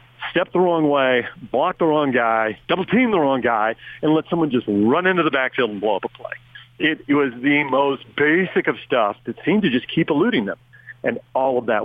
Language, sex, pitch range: English, male, 120-155 Hz